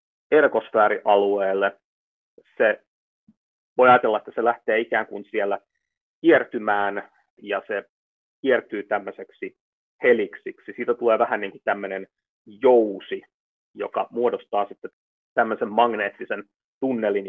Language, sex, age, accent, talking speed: Finnish, male, 30-49, native, 100 wpm